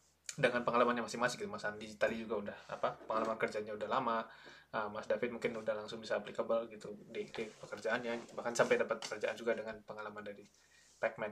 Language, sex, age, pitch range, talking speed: Indonesian, male, 20-39, 115-130 Hz, 180 wpm